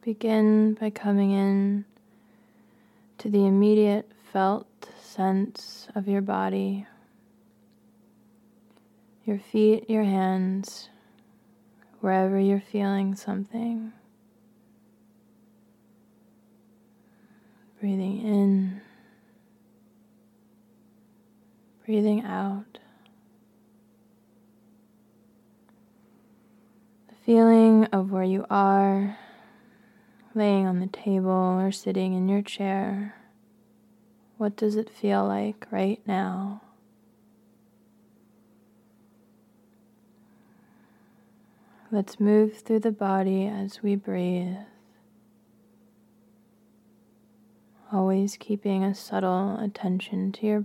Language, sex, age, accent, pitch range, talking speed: English, female, 20-39, American, 205-220 Hz, 70 wpm